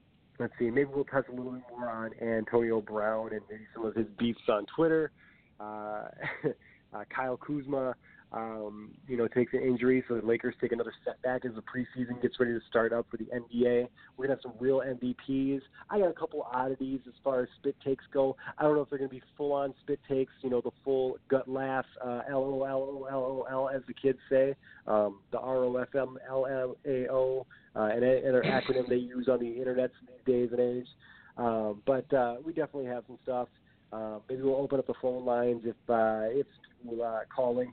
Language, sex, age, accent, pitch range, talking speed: English, male, 30-49, American, 115-130 Hz, 200 wpm